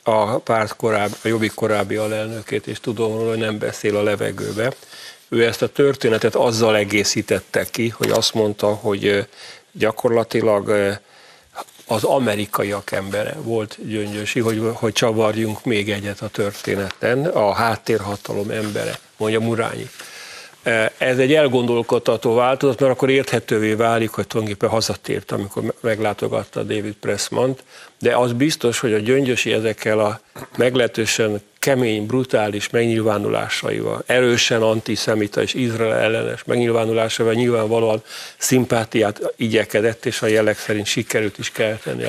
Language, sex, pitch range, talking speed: Hungarian, male, 105-120 Hz, 125 wpm